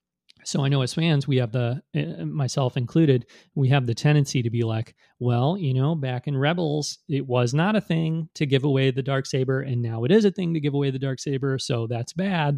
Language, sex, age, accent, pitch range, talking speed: English, male, 30-49, American, 120-140 Hz, 235 wpm